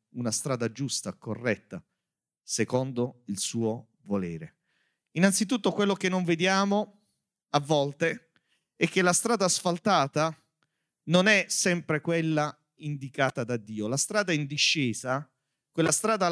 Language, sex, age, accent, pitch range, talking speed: Italian, male, 40-59, native, 150-205 Hz, 120 wpm